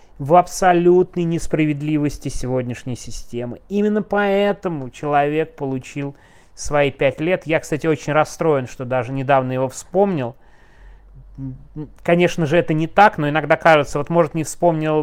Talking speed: 130 wpm